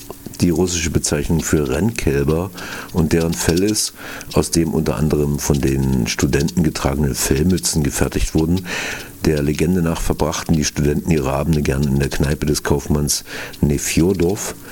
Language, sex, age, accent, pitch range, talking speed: German, male, 50-69, German, 70-90 Hz, 140 wpm